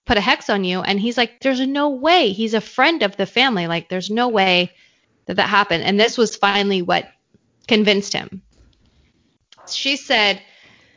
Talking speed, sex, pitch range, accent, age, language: 180 wpm, female, 190-230 Hz, American, 20-39, English